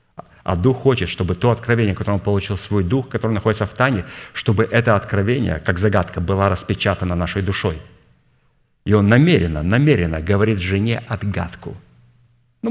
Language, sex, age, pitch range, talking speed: Russian, male, 50-69, 90-115 Hz, 150 wpm